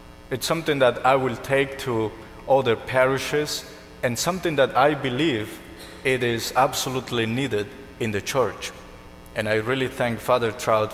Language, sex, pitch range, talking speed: English, male, 105-130 Hz, 150 wpm